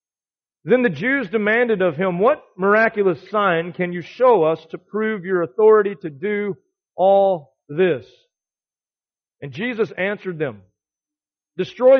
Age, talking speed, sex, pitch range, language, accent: 40-59, 130 wpm, male, 170-250 Hz, English, American